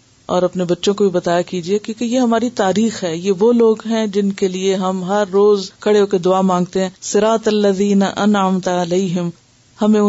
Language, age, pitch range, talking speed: Urdu, 50-69, 165-210 Hz, 190 wpm